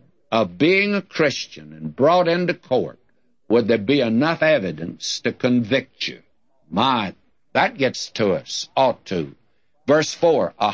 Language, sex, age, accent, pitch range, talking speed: English, male, 60-79, American, 110-180 Hz, 145 wpm